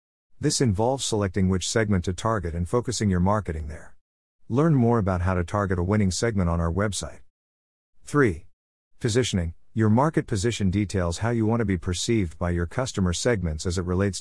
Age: 50-69